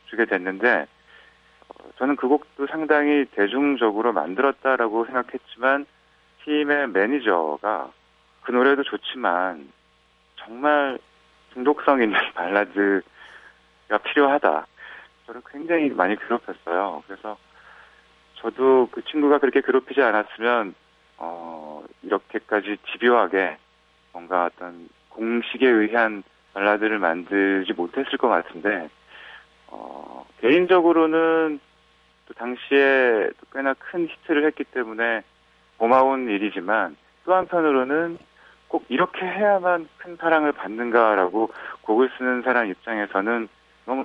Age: 40-59